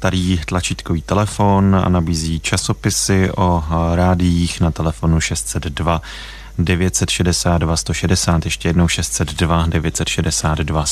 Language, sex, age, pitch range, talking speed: Czech, male, 30-49, 80-100 Hz, 95 wpm